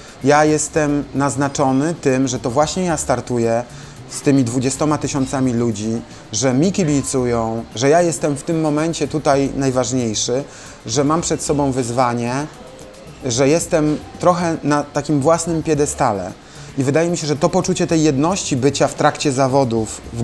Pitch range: 130-160 Hz